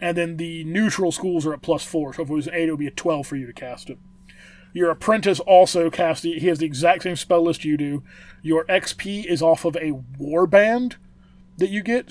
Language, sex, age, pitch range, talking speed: English, male, 30-49, 155-185 Hz, 240 wpm